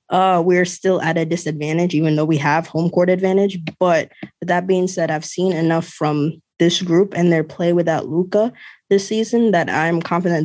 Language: English